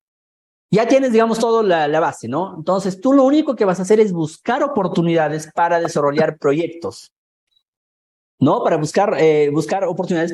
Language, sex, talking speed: Spanish, male, 165 wpm